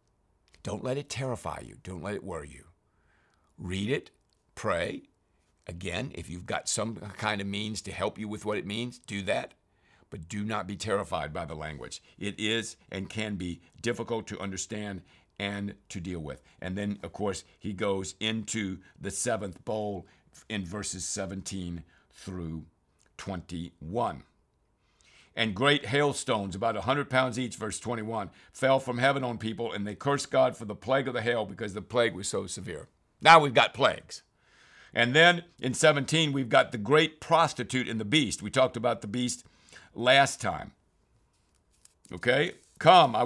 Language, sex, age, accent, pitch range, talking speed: English, male, 60-79, American, 95-130 Hz, 170 wpm